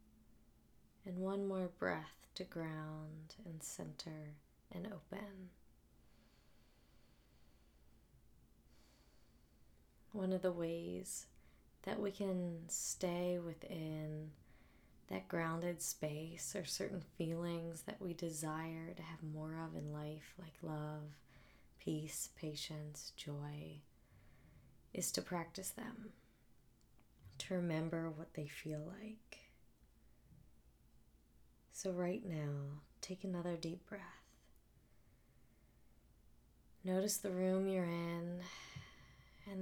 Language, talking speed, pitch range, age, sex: English, 95 wpm, 130-185 Hz, 20-39, female